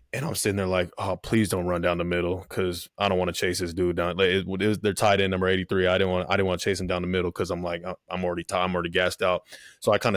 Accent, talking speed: American, 320 wpm